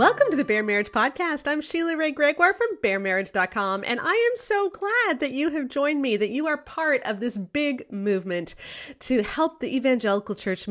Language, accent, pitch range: English, American, 185-260 Hz